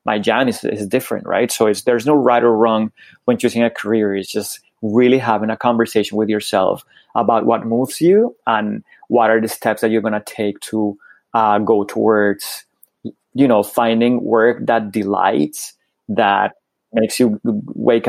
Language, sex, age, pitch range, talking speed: English, male, 30-49, 110-120 Hz, 175 wpm